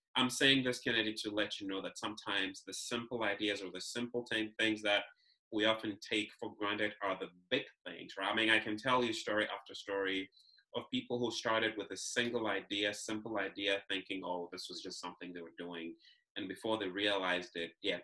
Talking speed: 215 wpm